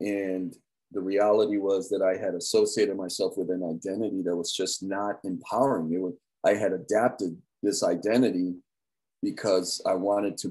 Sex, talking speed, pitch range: male, 155 wpm, 100-120 Hz